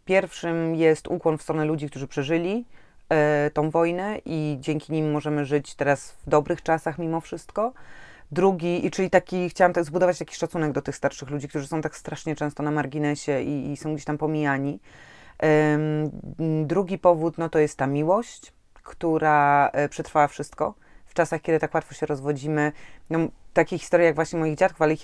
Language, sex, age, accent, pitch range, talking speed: Polish, female, 20-39, native, 150-170 Hz, 180 wpm